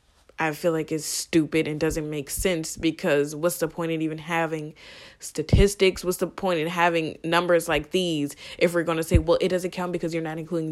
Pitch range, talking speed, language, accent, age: 155-190 Hz, 215 wpm, English, American, 10-29